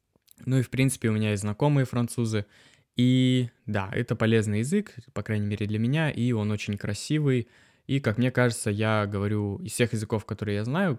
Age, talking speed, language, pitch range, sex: 20-39, 190 wpm, Russian, 105-125 Hz, male